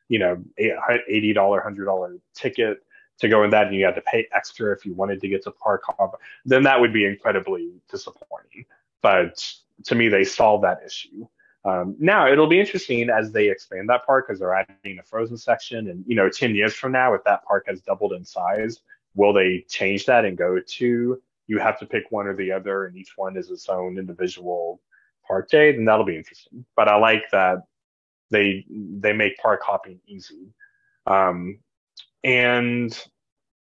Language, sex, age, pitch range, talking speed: English, male, 20-39, 95-150 Hz, 190 wpm